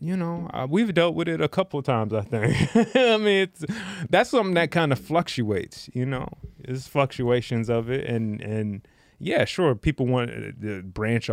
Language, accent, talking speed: English, American, 185 wpm